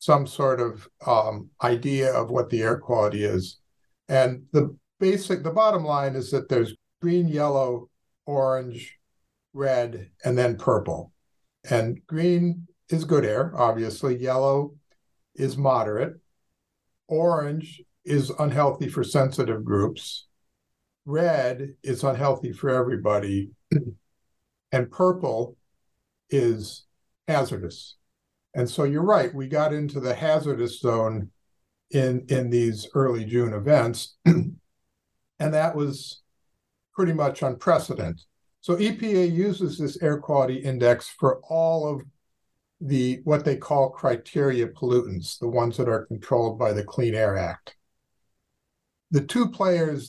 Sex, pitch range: male, 120-150 Hz